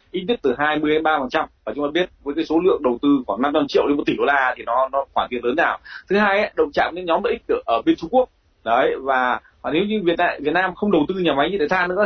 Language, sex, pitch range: Vietnamese, male, 145-235 Hz